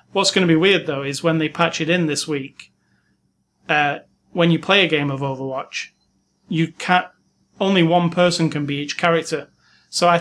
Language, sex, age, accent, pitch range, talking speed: English, male, 30-49, British, 150-170 Hz, 195 wpm